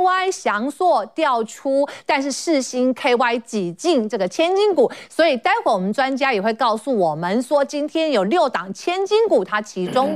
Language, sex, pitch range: Chinese, female, 225-330 Hz